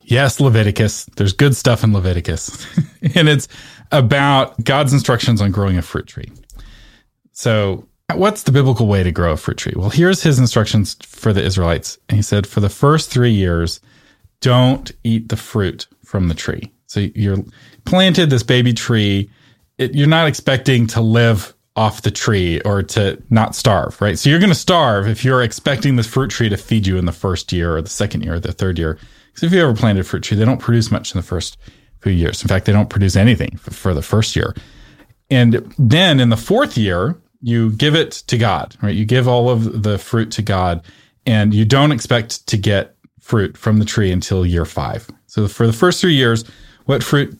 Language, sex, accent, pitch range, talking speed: English, male, American, 100-135 Hz, 205 wpm